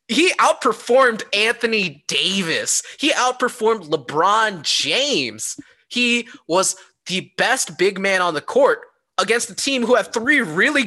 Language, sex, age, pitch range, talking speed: English, male, 20-39, 160-245 Hz, 130 wpm